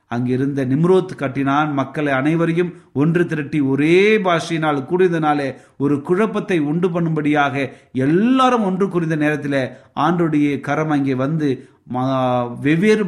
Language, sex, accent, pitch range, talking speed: Tamil, male, native, 135-175 Hz, 110 wpm